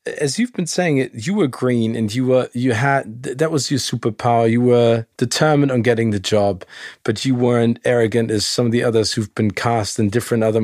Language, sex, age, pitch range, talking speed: German, male, 40-59, 115-140 Hz, 220 wpm